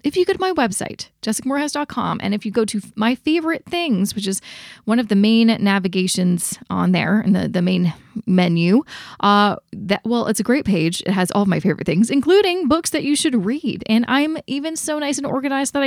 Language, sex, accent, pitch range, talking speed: English, female, American, 190-260 Hz, 215 wpm